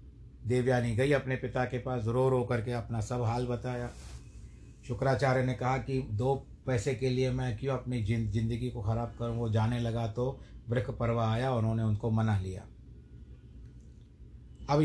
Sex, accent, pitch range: male, native, 110-135 Hz